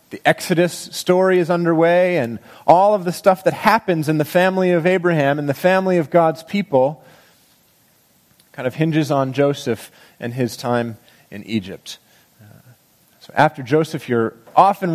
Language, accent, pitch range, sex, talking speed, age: English, American, 130-180 Hz, male, 155 wpm, 40-59